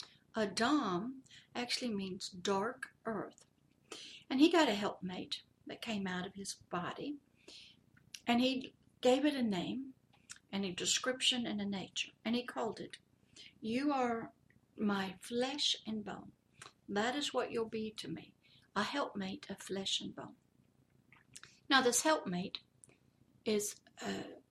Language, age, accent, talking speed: English, 60-79, American, 135 wpm